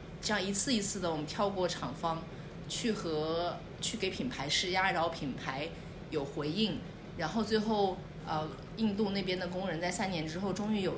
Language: Chinese